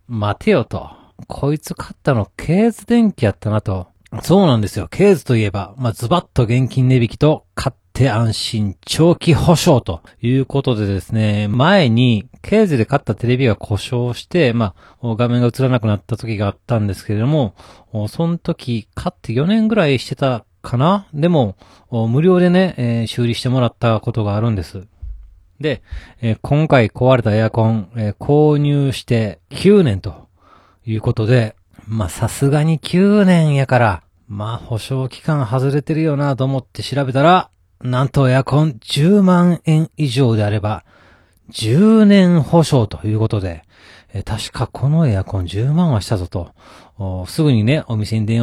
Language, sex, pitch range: Japanese, male, 105-145 Hz